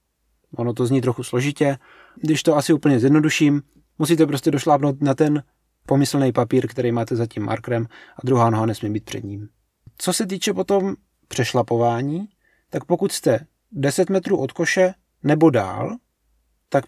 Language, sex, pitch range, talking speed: Czech, male, 120-170 Hz, 155 wpm